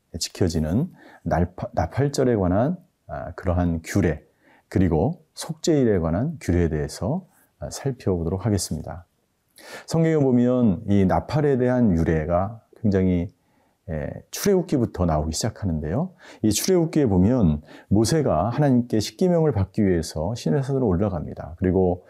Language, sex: Korean, male